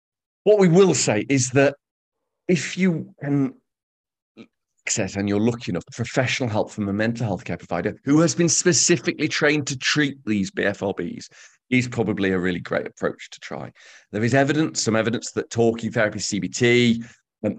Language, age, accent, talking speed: English, 40-59, British, 165 wpm